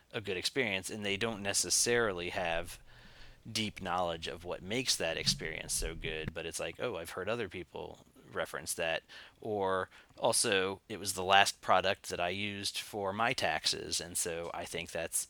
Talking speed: 175 wpm